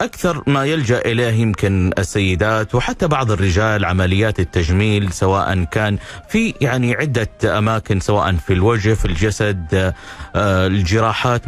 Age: 30-49